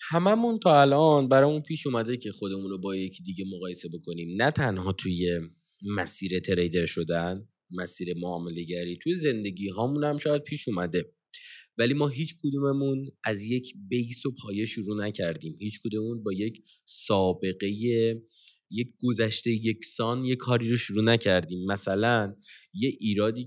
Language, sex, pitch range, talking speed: Persian, male, 95-130 Hz, 145 wpm